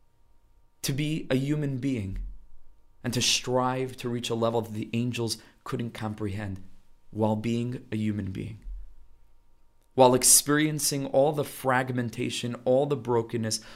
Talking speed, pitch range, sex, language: 130 wpm, 110-130 Hz, male, English